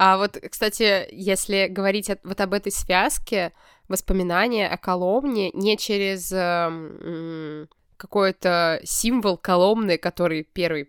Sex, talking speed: female, 115 wpm